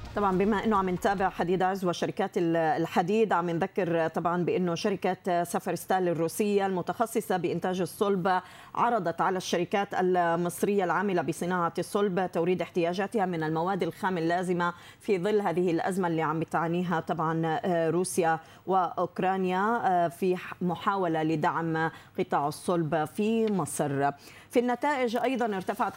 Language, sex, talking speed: Arabic, female, 120 wpm